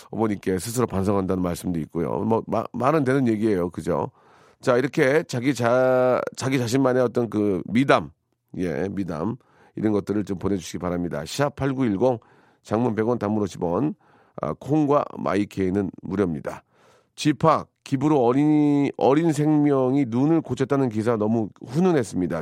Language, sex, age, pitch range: Korean, male, 40-59, 100-155 Hz